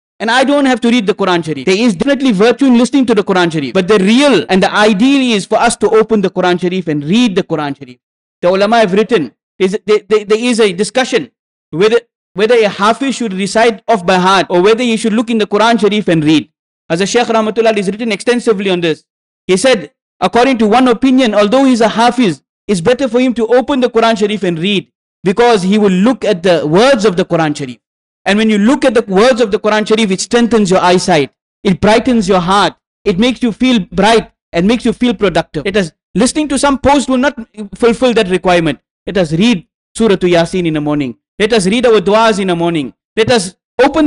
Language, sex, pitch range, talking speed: English, male, 185-240 Hz, 230 wpm